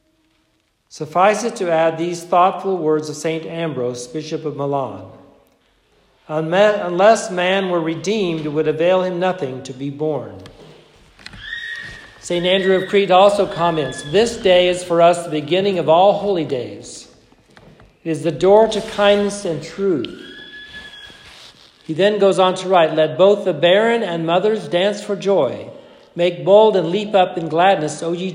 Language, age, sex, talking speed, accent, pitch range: English, 60-79, male, 155 wpm, American, 155-200 Hz